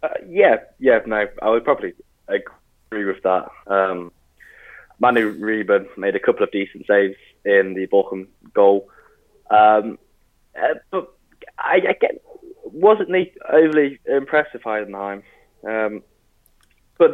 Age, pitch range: 10-29, 100-120 Hz